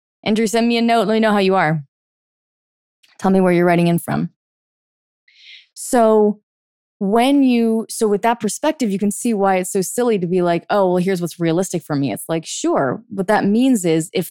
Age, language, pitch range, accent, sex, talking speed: 20-39, English, 170-225 Hz, American, female, 210 wpm